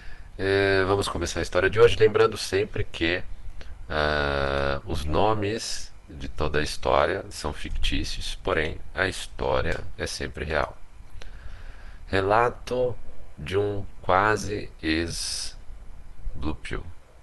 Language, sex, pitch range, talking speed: Portuguese, male, 75-95 Hz, 100 wpm